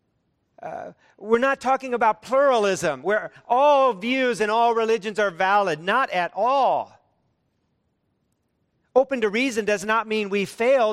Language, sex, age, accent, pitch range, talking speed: English, male, 50-69, American, 160-215 Hz, 135 wpm